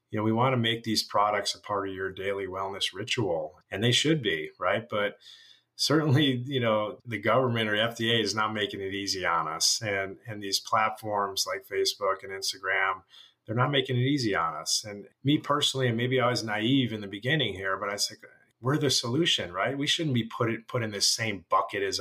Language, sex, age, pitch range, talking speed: English, male, 30-49, 100-125 Hz, 225 wpm